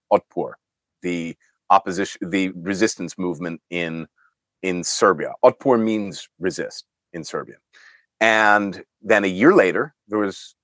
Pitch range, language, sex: 90-125 Hz, English, male